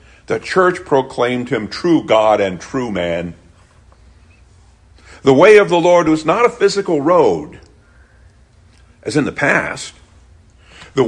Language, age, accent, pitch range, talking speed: English, 50-69, American, 85-135 Hz, 130 wpm